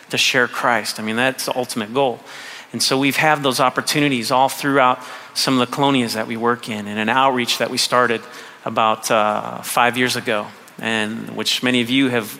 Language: English